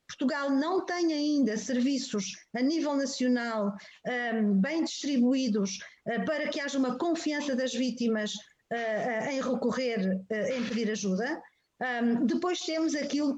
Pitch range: 230-295 Hz